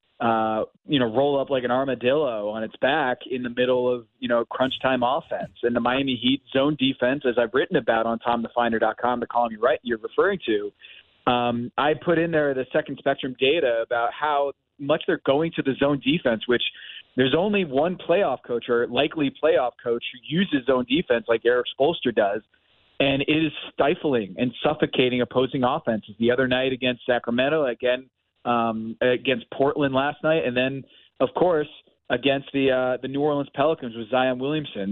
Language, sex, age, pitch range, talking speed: English, male, 30-49, 120-145 Hz, 185 wpm